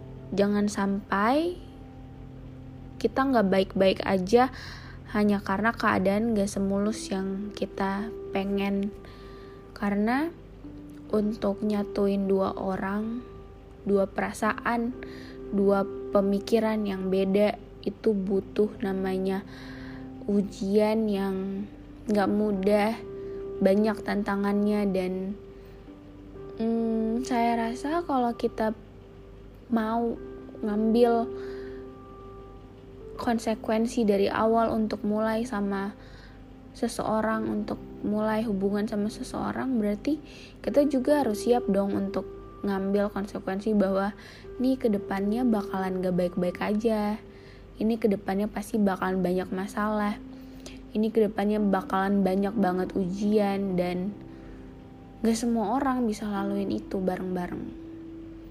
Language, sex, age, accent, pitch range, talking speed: Indonesian, female, 10-29, native, 190-220 Hz, 90 wpm